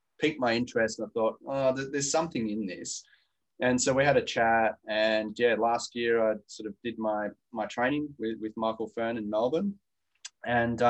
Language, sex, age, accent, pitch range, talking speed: English, male, 20-39, Australian, 100-120 Hz, 195 wpm